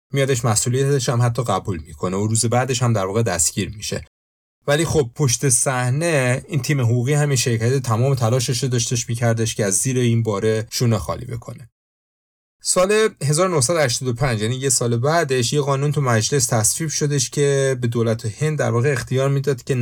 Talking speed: 170 wpm